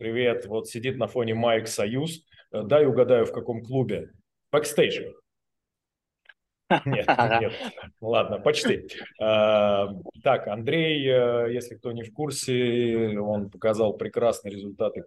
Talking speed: 110 wpm